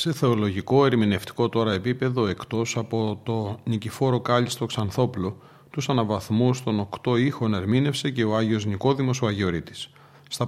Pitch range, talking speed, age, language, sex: 110-130 Hz, 140 wpm, 40-59, Greek, male